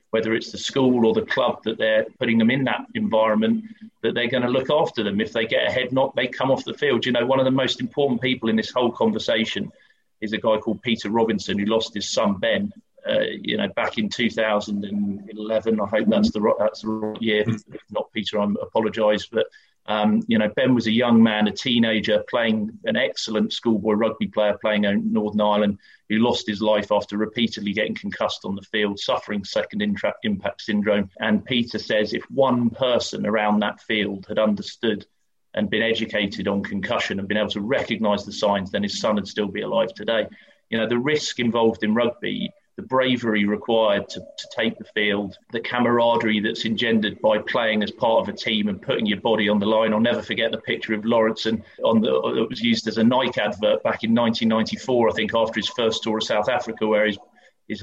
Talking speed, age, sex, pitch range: 215 wpm, 40-59, male, 105-120 Hz